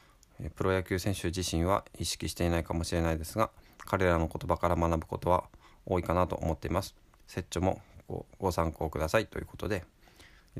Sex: male